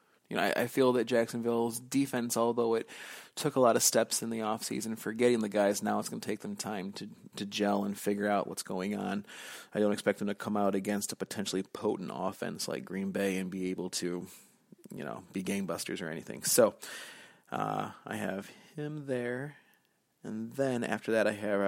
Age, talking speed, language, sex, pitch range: 30-49, 210 wpm, English, male, 100-120 Hz